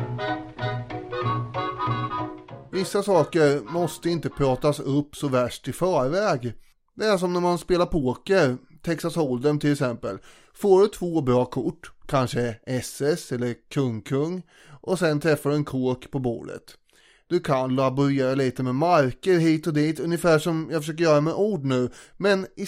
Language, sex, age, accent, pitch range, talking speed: Swedish, male, 30-49, native, 135-180 Hz, 155 wpm